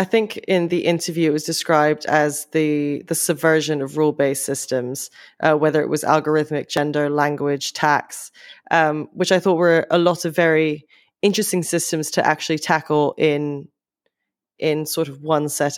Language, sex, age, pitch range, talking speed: English, female, 20-39, 150-170 Hz, 165 wpm